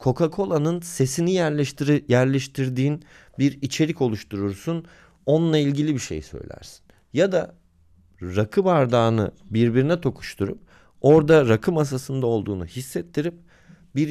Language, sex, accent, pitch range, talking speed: Turkish, male, native, 100-150 Hz, 100 wpm